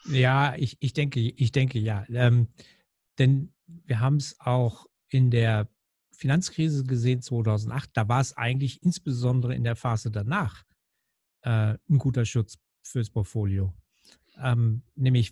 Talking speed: 135 wpm